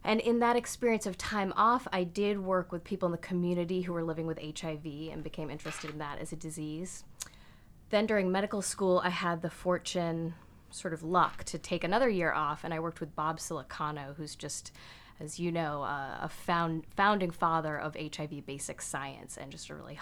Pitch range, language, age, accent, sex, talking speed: 150-180 Hz, English, 20-39, American, female, 200 wpm